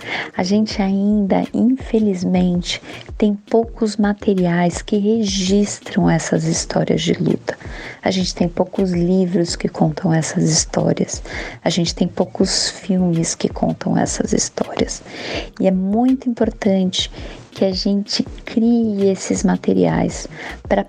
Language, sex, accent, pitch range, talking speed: Portuguese, female, Brazilian, 170-215 Hz, 120 wpm